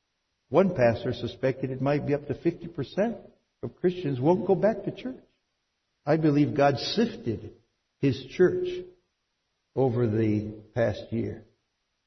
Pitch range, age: 120-180 Hz, 60-79